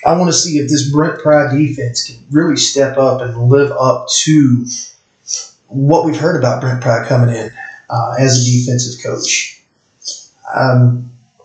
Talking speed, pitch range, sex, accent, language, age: 160 wpm, 125-155 Hz, male, American, English, 30-49